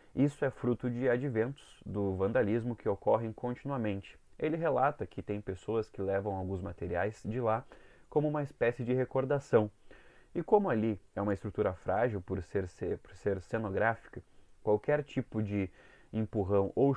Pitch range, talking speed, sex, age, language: 100-125 Hz, 150 wpm, male, 20-39, Portuguese